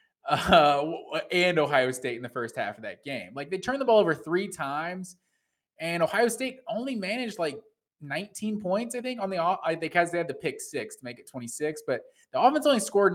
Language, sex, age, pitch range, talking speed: English, male, 20-39, 130-180 Hz, 215 wpm